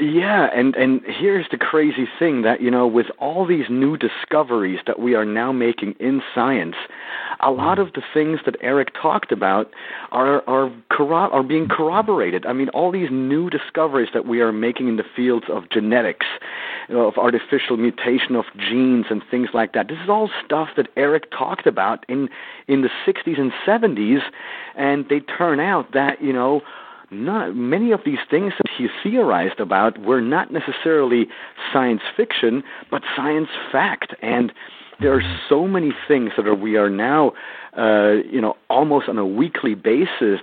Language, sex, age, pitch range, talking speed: English, male, 40-59, 115-160 Hz, 180 wpm